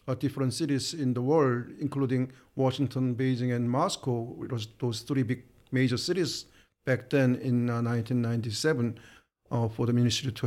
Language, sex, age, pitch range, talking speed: English, male, 50-69, 120-145 Hz, 140 wpm